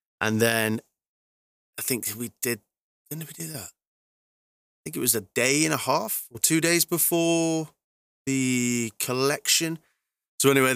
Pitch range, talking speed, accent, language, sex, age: 100-125 Hz, 150 wpm, British, English, male, 20-39